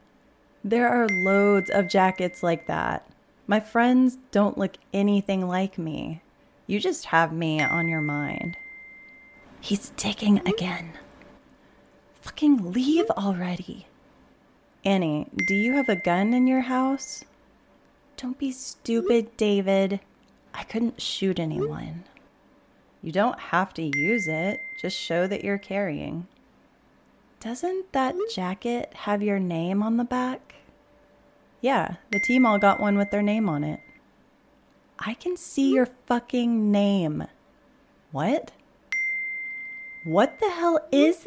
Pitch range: 190-265 Hz